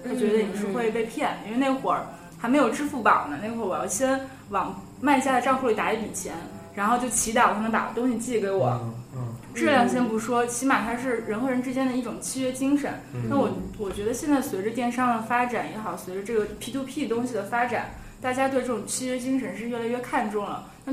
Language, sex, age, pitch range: Chinese, female, 20-39, 210-255 Hz